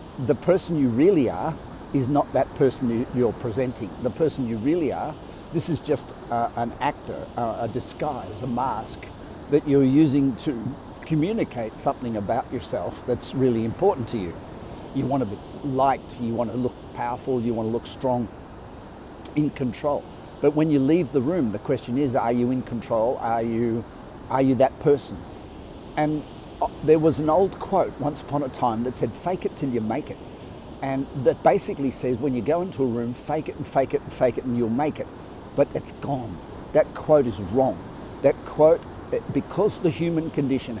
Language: English